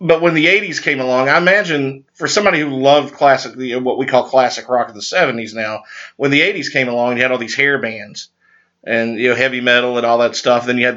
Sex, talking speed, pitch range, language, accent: male, 245 wpm, 125-150 Hz, English, American